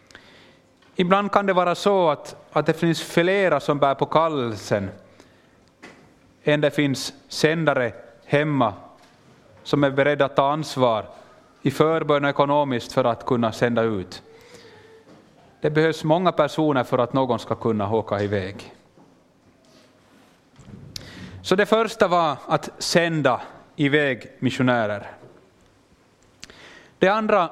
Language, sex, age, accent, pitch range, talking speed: Swedish, male, 30-49, Finnish, 125-170 Hz, 120 wpm